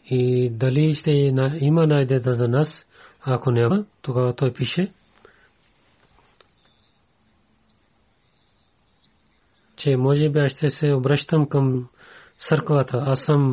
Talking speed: 110 wpm